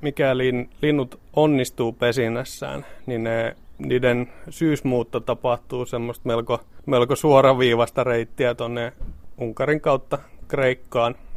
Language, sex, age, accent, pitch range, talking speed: Finnish, male, 30-49, native, 115-130 Hz, 90 wpm